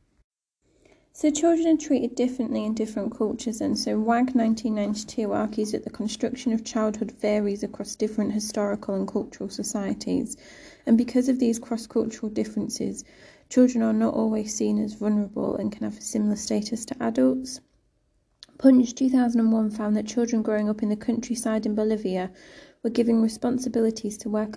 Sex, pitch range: female, 195-235 Hz